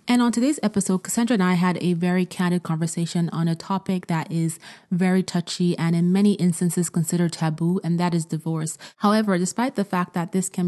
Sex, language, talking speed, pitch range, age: female, English, 200 wpm, 165-185 Hz, 30-49